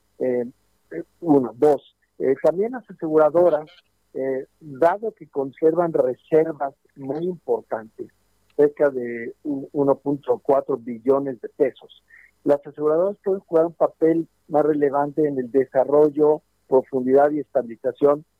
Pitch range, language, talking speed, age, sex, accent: 130-160 Hz, Spanish, 115 wpm, 50-69, male, Mexican